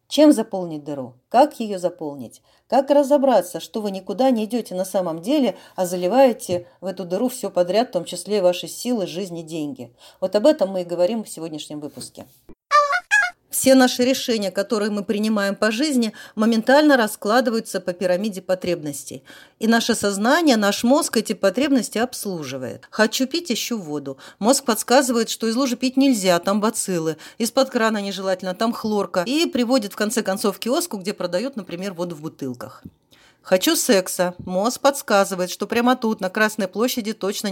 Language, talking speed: Russian, 165 wpm